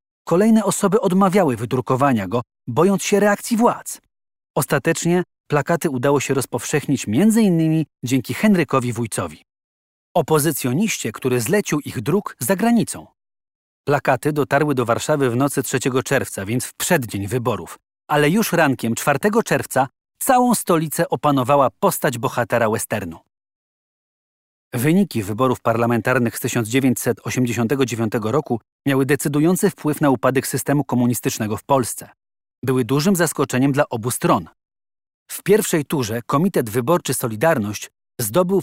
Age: 30-49